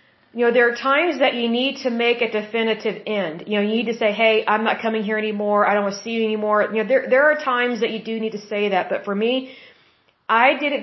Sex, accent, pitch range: female, American, 210-245 Hz